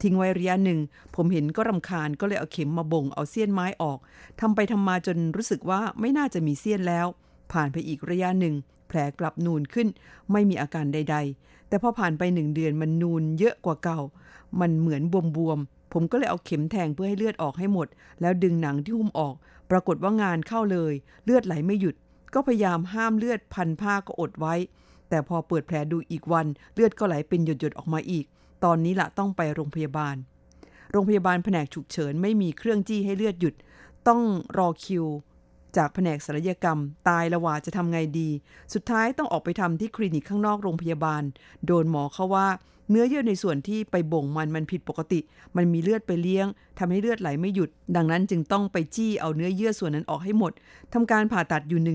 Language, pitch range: Thai, 160-205 Hz